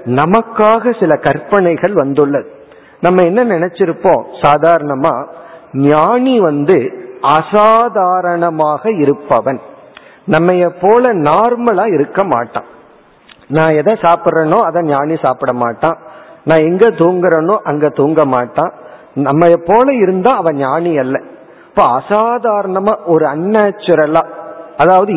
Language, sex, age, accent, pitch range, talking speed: Tamil, male, 50-69, native, 150-200 Hz, 100 wpm